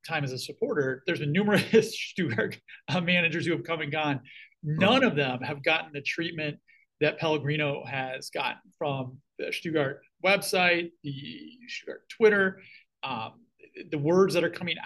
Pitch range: 145-195 Hz